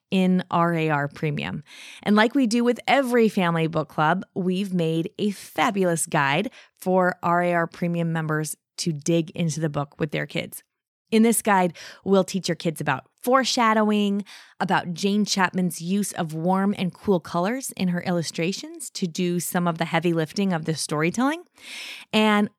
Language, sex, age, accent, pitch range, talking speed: English, female, 20-39, American, 170-220 Hz, 160 wpm